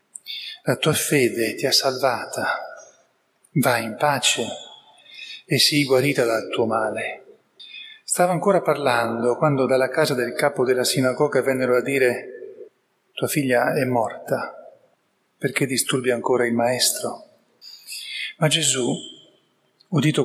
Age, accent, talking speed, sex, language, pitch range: 40-59, native, 120 wpm, male, Italian, 125-155 Hz